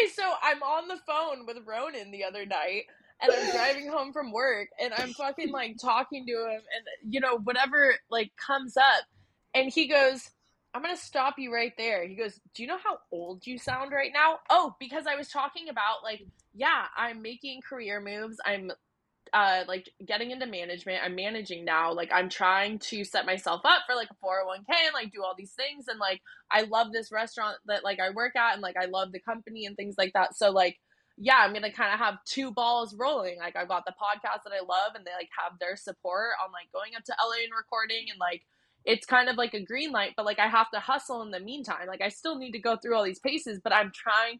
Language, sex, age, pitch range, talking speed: English, female, 20-39, 195-265 Hz, 235 wpm